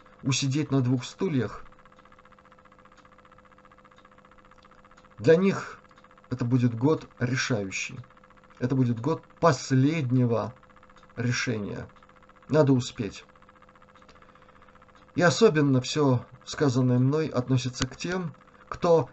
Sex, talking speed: male, 80 wpm